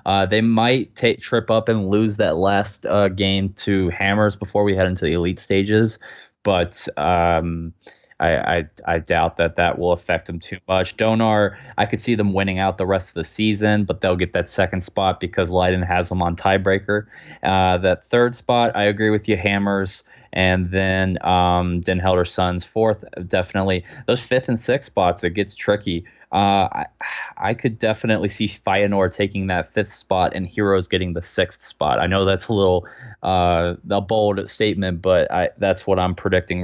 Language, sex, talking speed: Dutch, male, 190 wpm